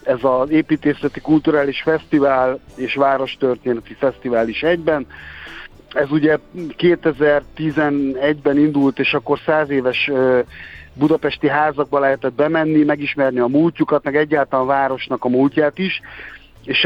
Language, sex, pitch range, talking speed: Hungarian, male, 130-150 Hz, 115 wpm